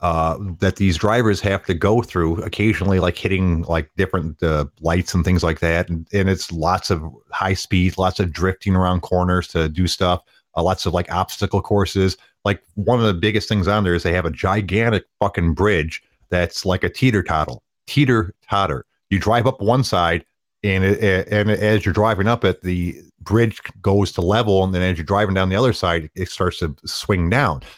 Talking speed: 200 wpm